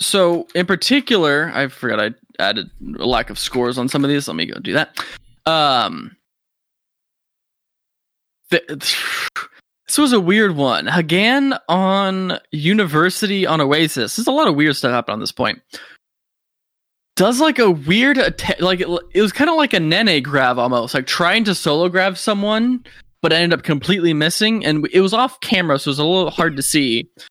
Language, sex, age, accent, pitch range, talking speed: English, male, 20-39, American, 135-185 Hz, 180 wpm